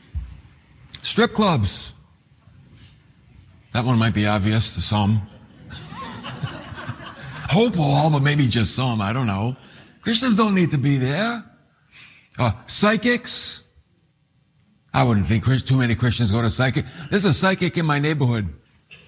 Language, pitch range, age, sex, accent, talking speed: English, 130-170 Hz, 60-79, male, American, 130 wpm